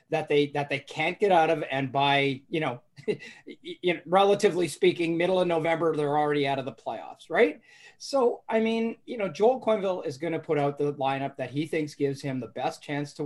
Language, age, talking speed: English, 30-49, 215 wpm